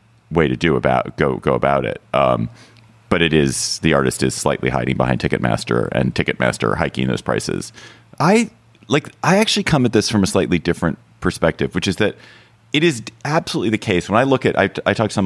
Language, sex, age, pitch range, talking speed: English, male, 30-49, 70-105 Hz, 210 wpm